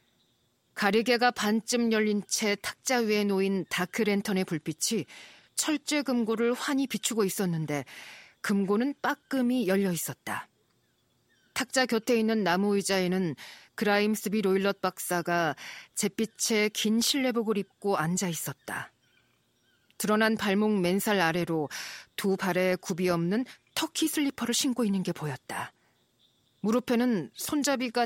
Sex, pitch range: female, 180-240 Hz